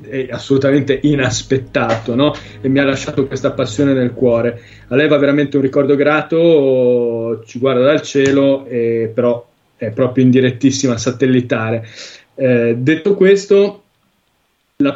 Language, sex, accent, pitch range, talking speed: Italian, male, native, 125-145 Hz, 135 wpm